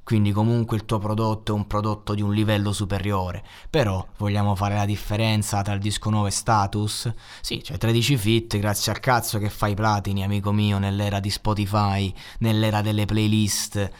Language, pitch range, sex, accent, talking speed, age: Italian, 95-120 Hz, male, native, 180 wpm, 20-39